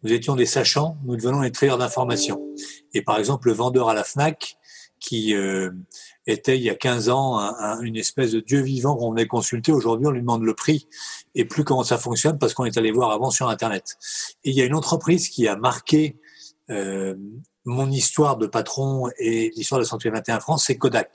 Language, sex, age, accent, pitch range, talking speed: French, male, 40-59, French, 110-140 Hz, 220 wpm